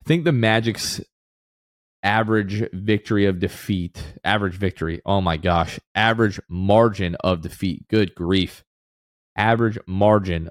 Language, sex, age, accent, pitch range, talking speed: English, male, 20-39, American, 90-105 Hz, 115 wpm